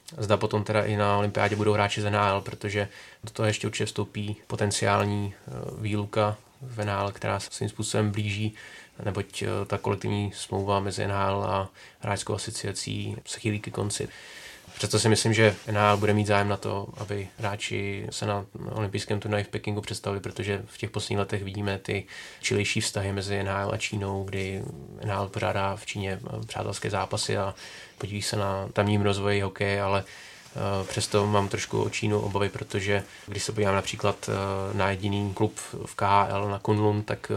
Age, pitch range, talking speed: 20-39, 100-105 Hz, 165 wpm